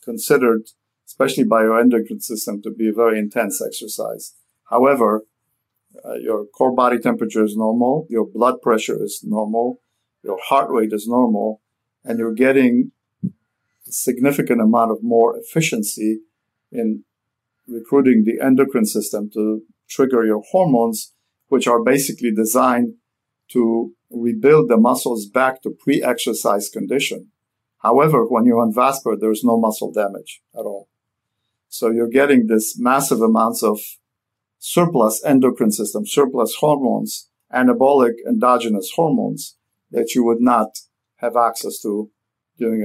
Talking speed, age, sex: 130 wpm, 50-69, male